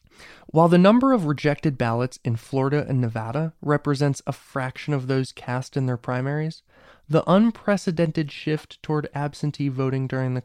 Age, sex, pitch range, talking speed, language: 20-39, male, 130-165 Hz, 155 wpm, English